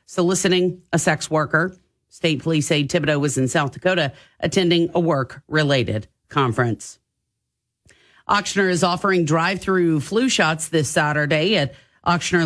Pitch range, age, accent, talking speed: 150-185 Hz, 40-59, American, 135 wpm